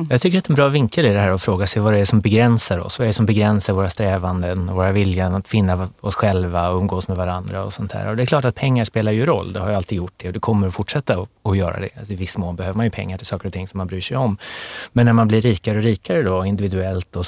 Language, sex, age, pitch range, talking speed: Swedish, male, 30-49, 95-115 Hz, 305 wpm